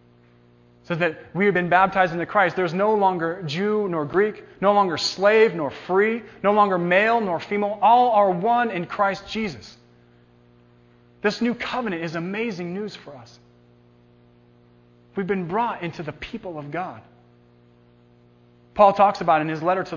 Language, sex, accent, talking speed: English, male, American, 160 wpm